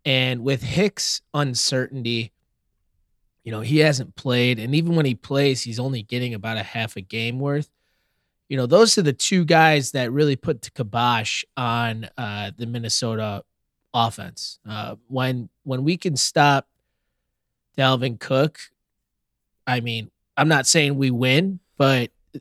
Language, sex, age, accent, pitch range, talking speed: English, male, 20-39, American, 120-145 Hz, 150 wpm